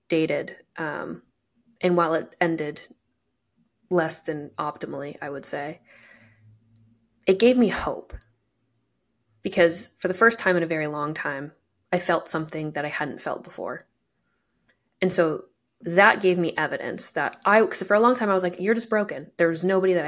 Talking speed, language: 170 wpm, English